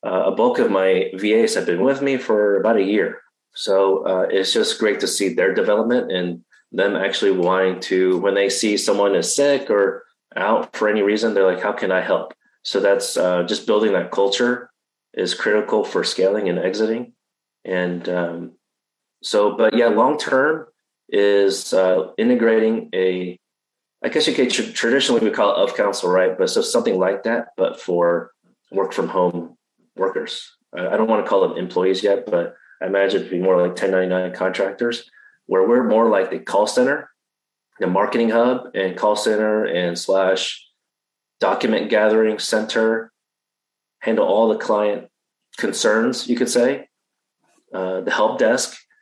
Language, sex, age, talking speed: English, male, 30-49, 170 wpm